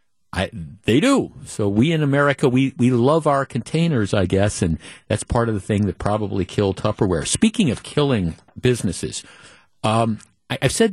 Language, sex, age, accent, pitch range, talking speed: English, male, 50-69, American, 100-125 Hz, 175 wpm